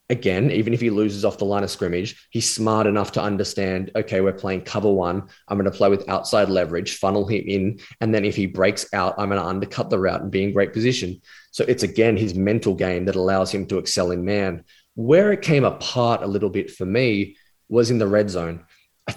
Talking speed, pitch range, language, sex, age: 235 wpm, 95-115 Hz, English, male, 20-39